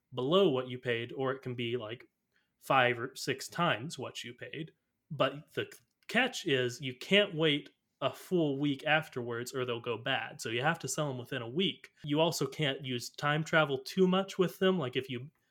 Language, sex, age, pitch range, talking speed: English, male, 20-39, 125-145 Hz, 205 wpm